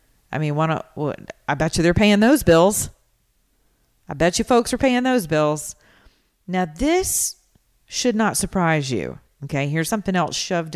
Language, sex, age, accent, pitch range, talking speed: English, female, 40-59, American, 140-190 Hz, 165 wpm